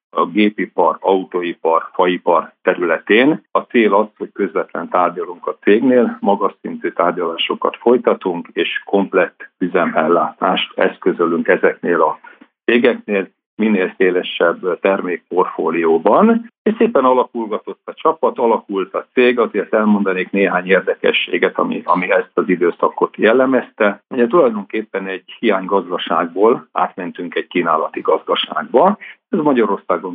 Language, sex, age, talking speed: Hungarian, male, 50-69, 110 wpm